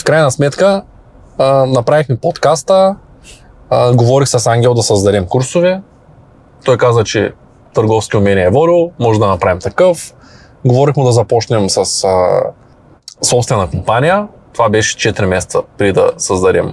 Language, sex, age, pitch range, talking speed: Bulgarian, male, 20-39, 120-160 Hz, 135 wpm